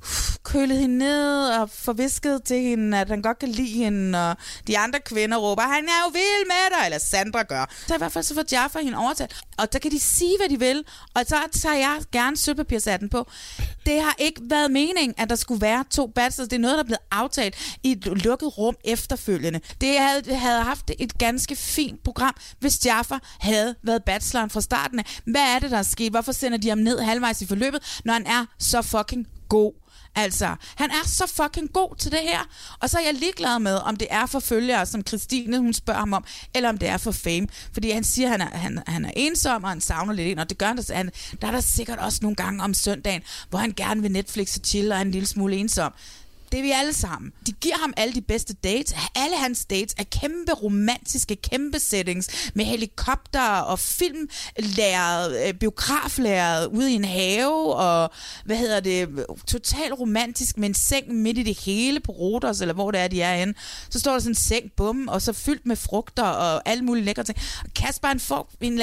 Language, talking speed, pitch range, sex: Danish, 220 wpm, 205-265 Hz, female